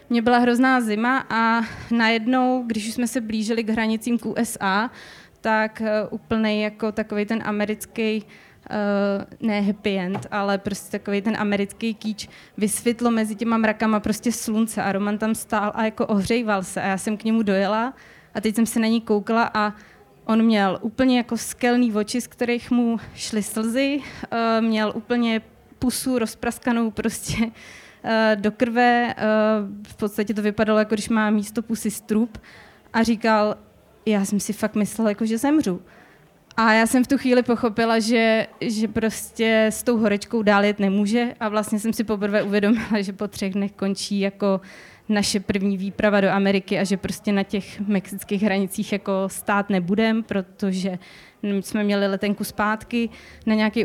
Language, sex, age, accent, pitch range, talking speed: Czech, female, 20-39, native, 205-230 Hz, 160 wpm